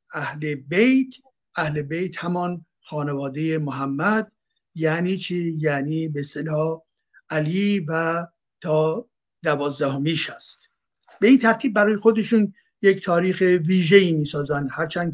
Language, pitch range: Persian, 150-195 Hz